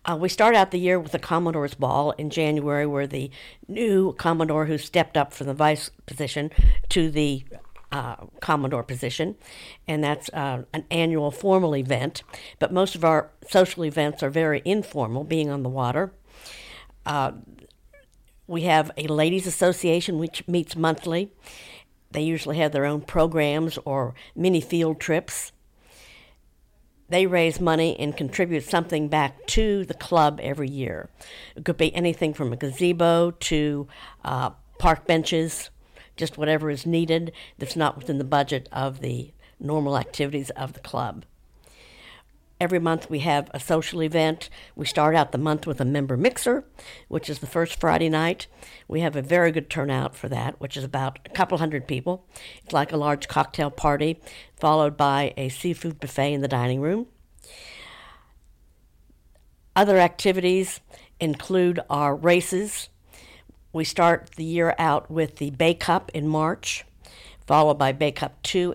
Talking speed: 155 wpm